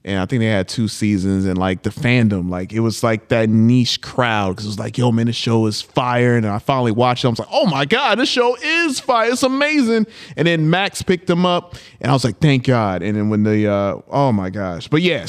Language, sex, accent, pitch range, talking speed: English, male, American, 115-150 Hz, 265 wpm